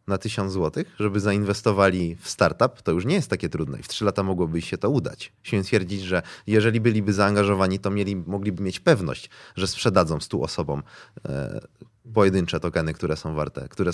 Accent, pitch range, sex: native, 95-120 Hz, male